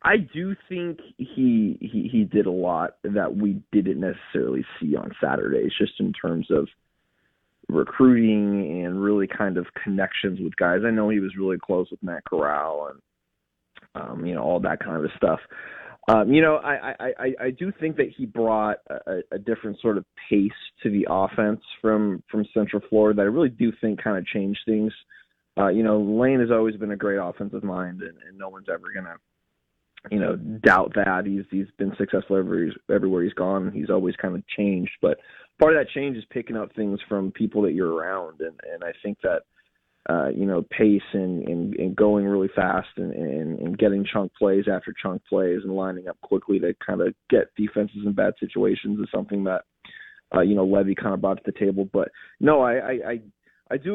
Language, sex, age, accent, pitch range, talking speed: English, male, 20-39, American, 100-115 Hz, 205 wpm